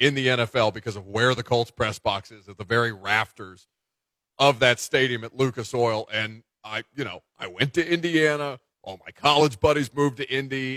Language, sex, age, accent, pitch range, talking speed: English, male, 40-59, American, 105-130 Hz, 200 wpm